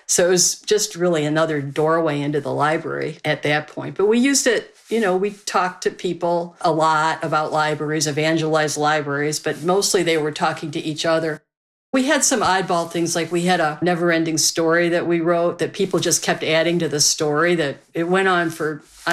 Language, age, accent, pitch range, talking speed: English, 50-69, American, 155-185 Hz, 205 wpm